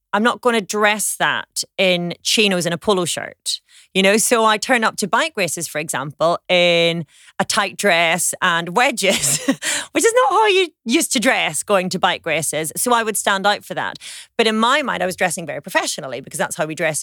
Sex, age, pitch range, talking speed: female, 30-49, 165-225 Hz, 220 wpm